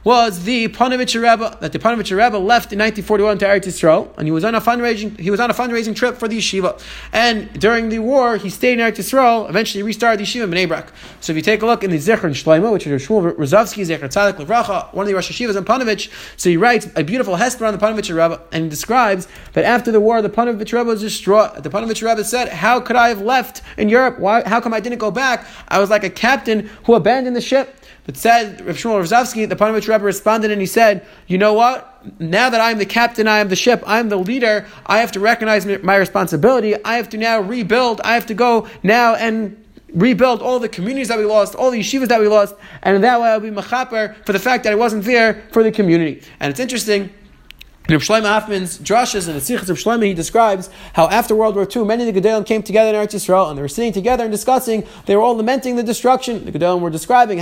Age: 30-49